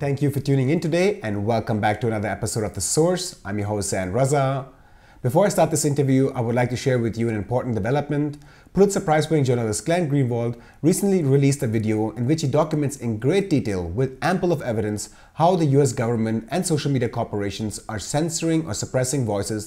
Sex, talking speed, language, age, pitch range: male, 210 wpm, English, 30-49, 110-150 Hz